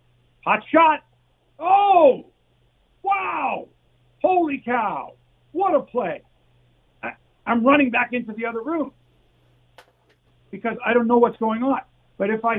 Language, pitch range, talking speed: English, 155-245 Hz, 130 wpm